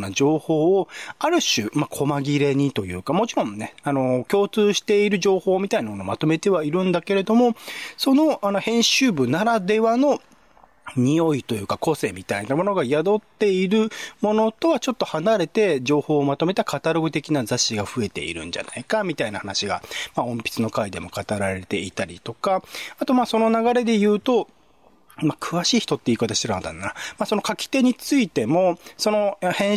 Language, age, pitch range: Japanese, 40-59, 135-215 Hz